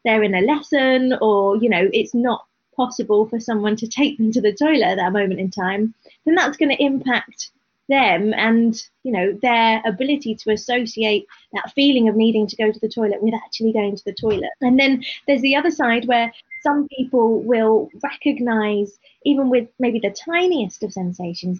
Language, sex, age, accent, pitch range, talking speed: English, female, 20-39, British, 205-250 Hz, 190 wpm